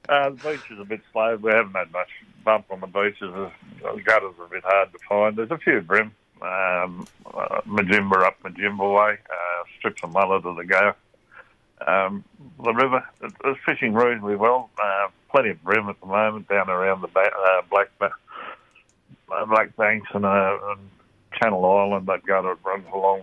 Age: 60-79